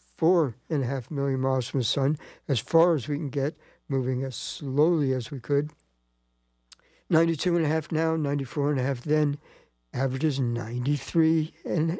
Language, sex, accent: English, male, American